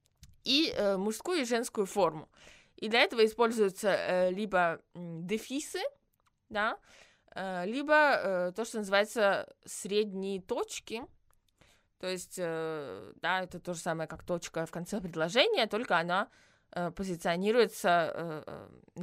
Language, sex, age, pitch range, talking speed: Russian, female, 20-39, 170-220 Hz, 125 wpm